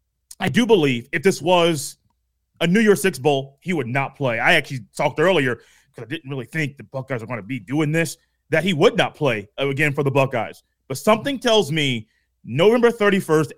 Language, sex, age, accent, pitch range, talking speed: English, male, 30-49, American, 145-195 Hz, 210 wpm